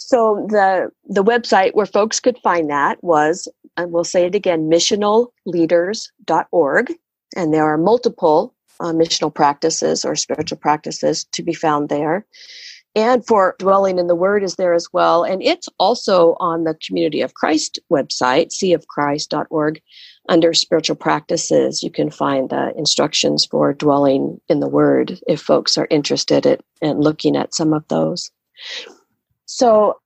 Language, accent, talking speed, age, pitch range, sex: English, American, 150 wpm, 50-69, 160-220 Hz, female